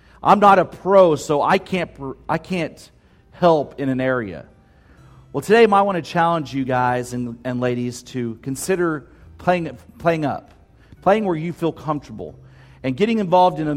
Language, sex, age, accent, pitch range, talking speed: English, male, 40-59, American, 120-165 Hz, 175 wpm